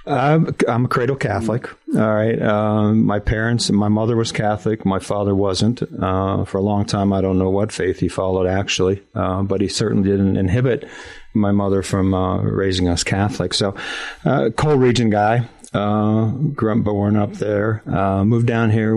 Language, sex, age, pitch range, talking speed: English, male, 40-59, 95-115 Hz, 180 wpm